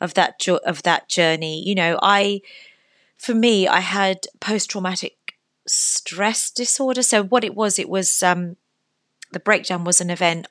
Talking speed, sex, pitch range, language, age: 155 wpm, female, 170-205 Hz, English, 30-49